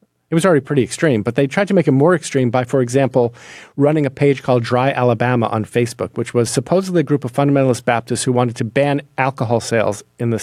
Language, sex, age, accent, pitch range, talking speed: English, male, 50-69, American, 115-140 Hz, 230 wpm